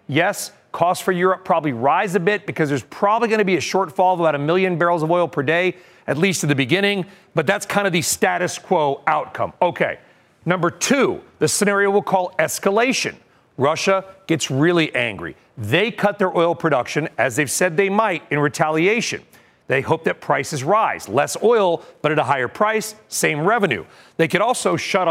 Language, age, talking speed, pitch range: English, 40-59, 190 wpm, 150-195 Hz